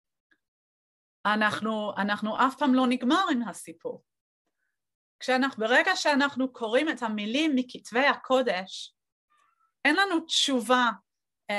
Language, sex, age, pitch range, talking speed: Hebrew, female, 30-49, 190-255 Hz, 100 wpm